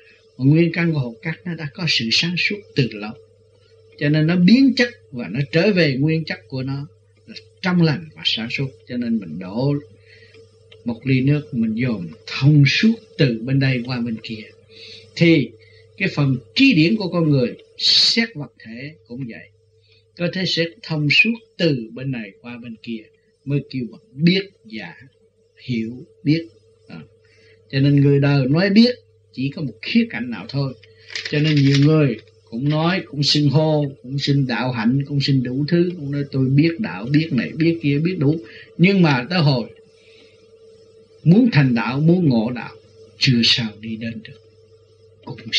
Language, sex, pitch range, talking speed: Vietnamese, male, 115-165 Hz, 180 wpm